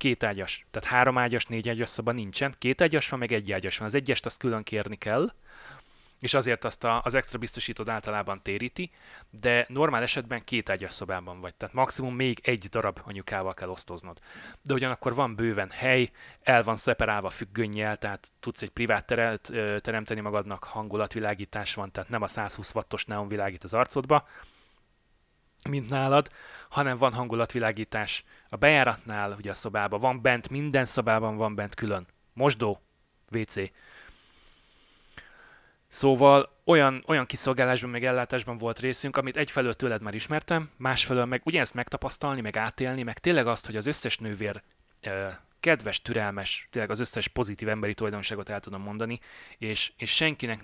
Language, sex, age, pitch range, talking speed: Hungarian, male, 30-49, 105-130 Hz, 155 wpm